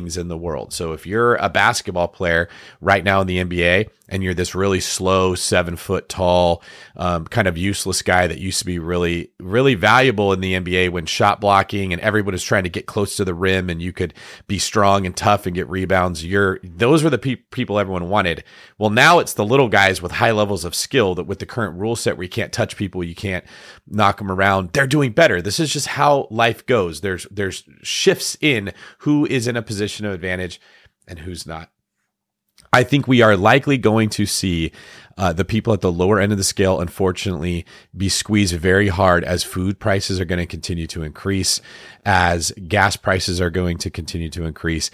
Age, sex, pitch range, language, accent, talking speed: 30-49, male, 90-105 Hz, English, American, 210 wpm